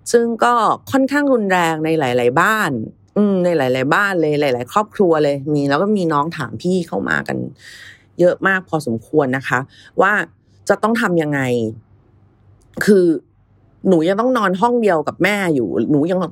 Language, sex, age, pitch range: Thai, female, 30-49, 140-215 Hz